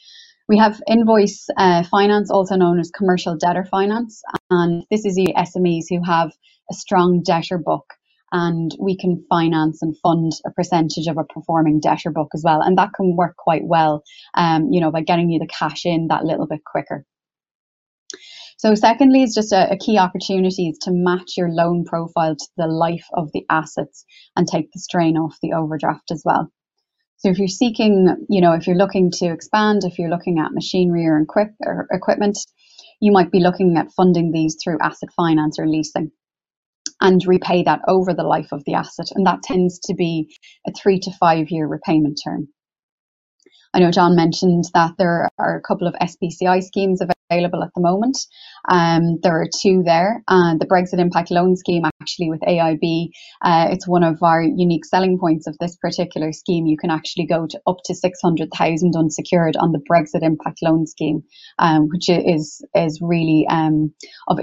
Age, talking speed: 20-39, 185 wpm